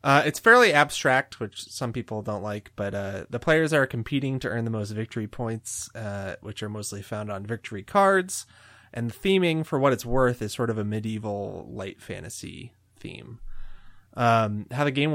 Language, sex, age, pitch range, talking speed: English, male, 20-39, 105-130 Hz, 190 wpm